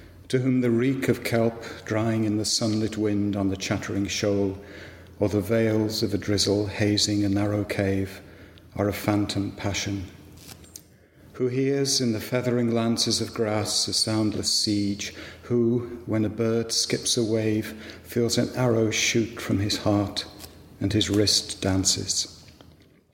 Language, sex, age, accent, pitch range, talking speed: English, male, 50-69, British, 100-115 Hz, 150 wpm